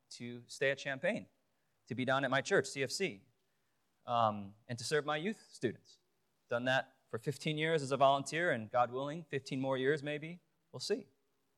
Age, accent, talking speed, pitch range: 30-49, American, 180 wpm, 130-190 Hz